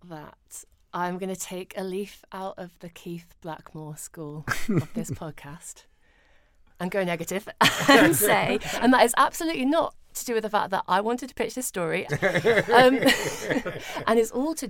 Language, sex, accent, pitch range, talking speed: English, female, British, 155-210 Hz, 175 wpm